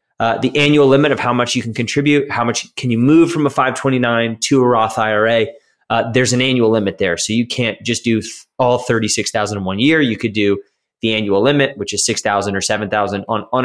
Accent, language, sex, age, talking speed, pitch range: American, English, male, 20-39, 245 wpm, 105-130 Hz